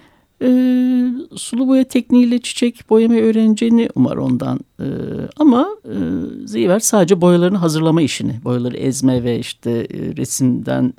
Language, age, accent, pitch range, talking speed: Turkish, 60-79, native, 150-235 Hz, 125 wpm